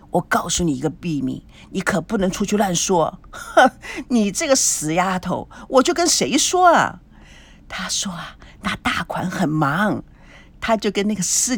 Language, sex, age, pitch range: Chinese, female, 50-69, 190-290 Hz